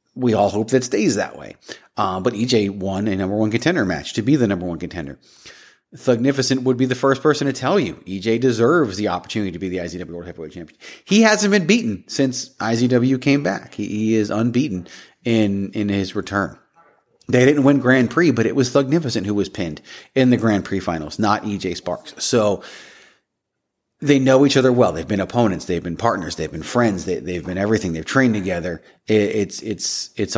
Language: English